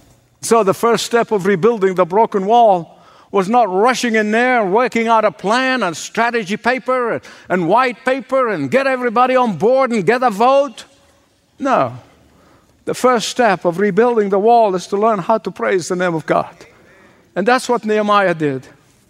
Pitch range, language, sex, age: 195-250 Hz, English, male, 50-69